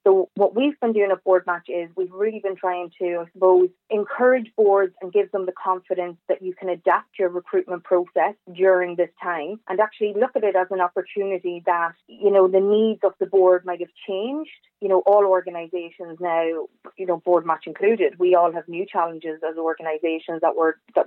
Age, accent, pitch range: 30-49, Irish, 170-190 Hz